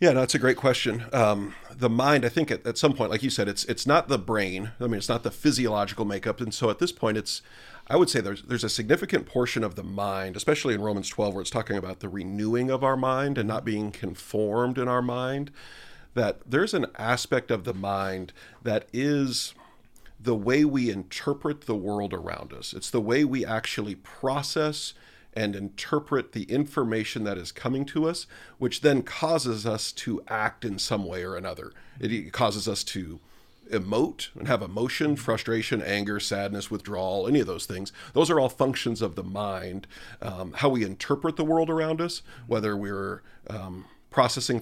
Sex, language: male, English